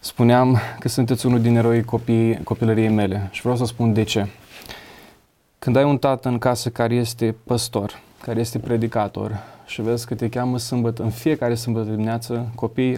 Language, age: Romanian, 20-39